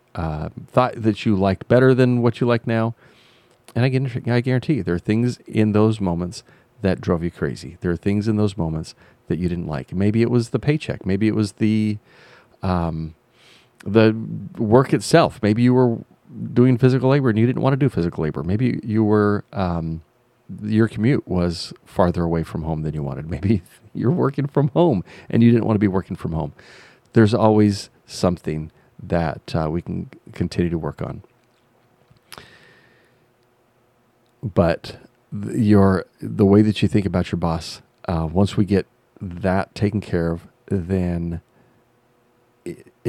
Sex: male